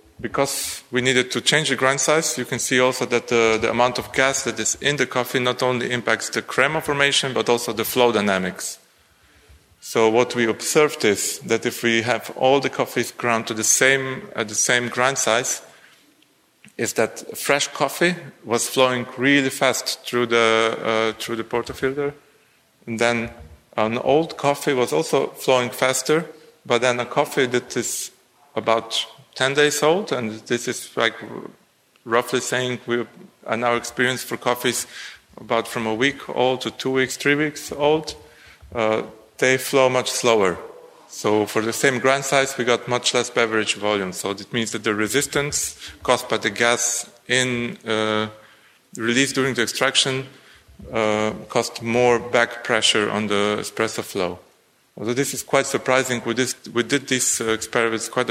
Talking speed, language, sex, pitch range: 170 wpm, English, male, 110-130 Hz